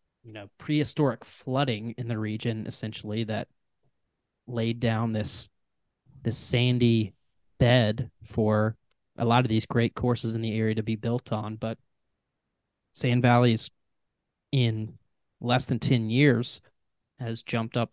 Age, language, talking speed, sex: 20-39, English, 135 wpm, male